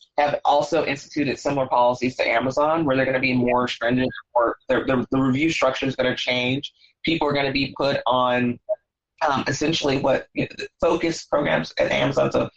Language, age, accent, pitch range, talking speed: English, 20-39, American, 130-160 Hz, 190 wpm